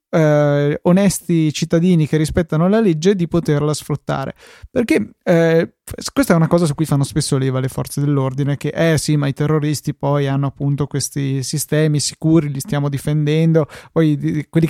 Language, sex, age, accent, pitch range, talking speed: Italian, male, 20-39, native, 140-165 Hz, 175 wpm